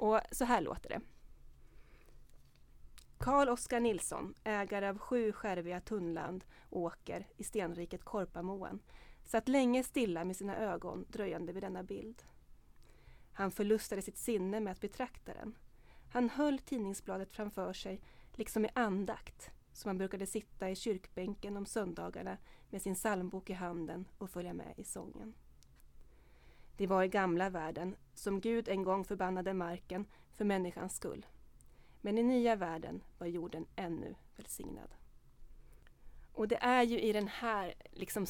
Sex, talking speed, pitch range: female, 145 wpm, 180-220 Hz